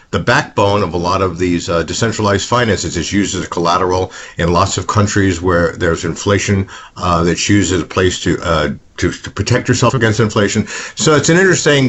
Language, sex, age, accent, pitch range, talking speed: English, male, 50-69, American, 90-115 Hz, 200 wpm